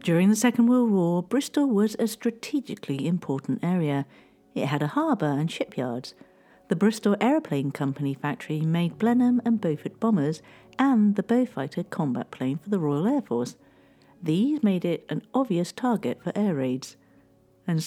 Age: 50-69